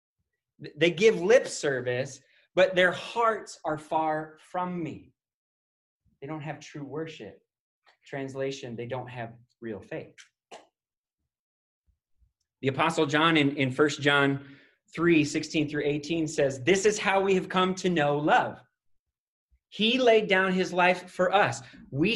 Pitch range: 130-180 Hz